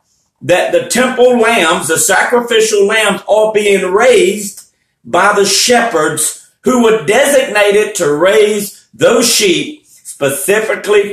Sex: male